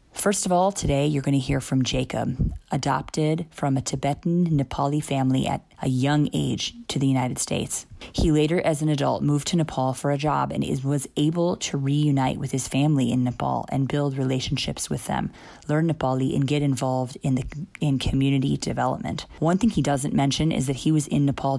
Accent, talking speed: American, 195 wpm